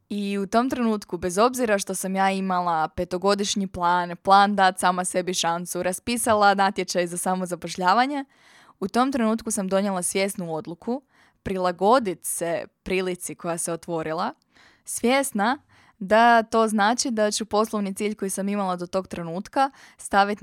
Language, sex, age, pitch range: Croatian, female, 20-39, 180-215 Hz